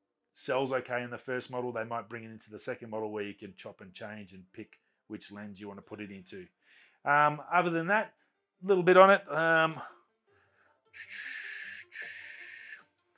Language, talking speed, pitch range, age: English, 185 wpm, 120-145 Hz, 30-49